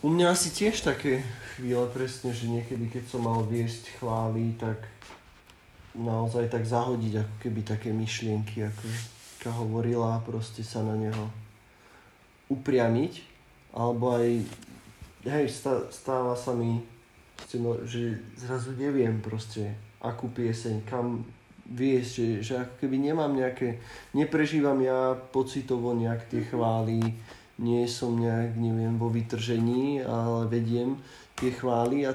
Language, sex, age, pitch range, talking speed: Czech, male, 20-39, 115-130 Hz, 120 wpm